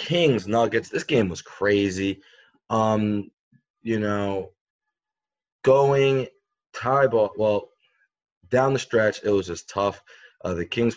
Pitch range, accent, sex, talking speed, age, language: 100-120 Hz, American, male, 125 wpm, 20-39, English